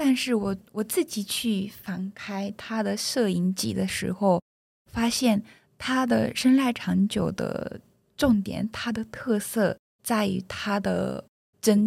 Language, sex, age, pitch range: Chinese, female, 20-39, 185-220 Hz